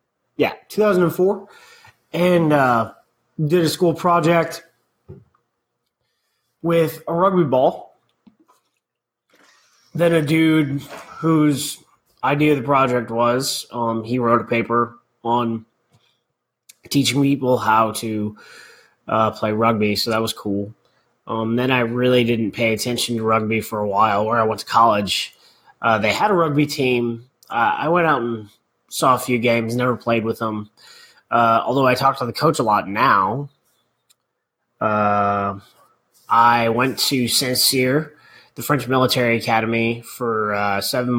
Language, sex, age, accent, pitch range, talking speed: English, male, 30-49, American, 110-140 Hz, 140 wpm